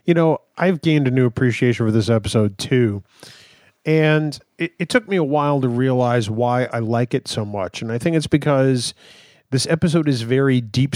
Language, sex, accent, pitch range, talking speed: English, male, American, 115-145 Hz, 195 wpm